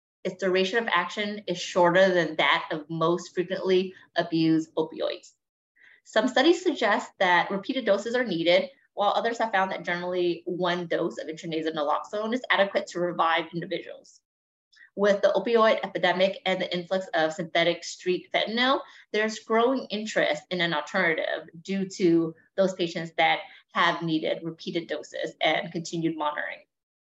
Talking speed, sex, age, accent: 145 wpm, female, 20-39, American